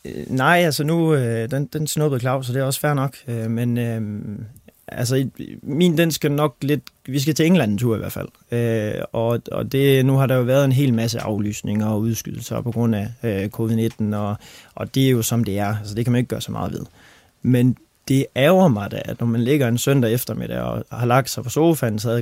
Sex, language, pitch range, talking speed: male, Danish, 115-130 Hz, 235 wpm